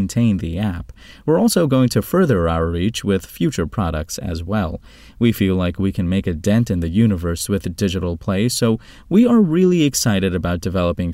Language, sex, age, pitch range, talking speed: English, male, 30-49, 90-120 Hz, 195 wpm